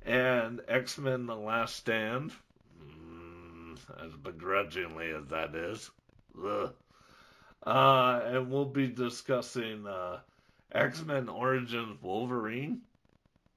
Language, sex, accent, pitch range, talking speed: English, male, American, 120-145 Hz, 85 wpm